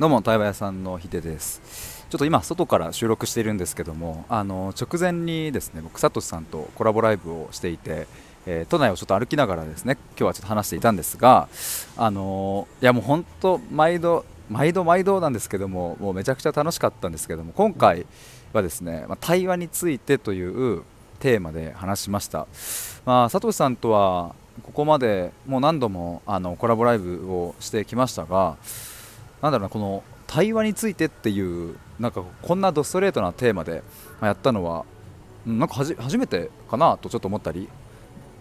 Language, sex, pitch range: Japanese, male, 95-150 Hz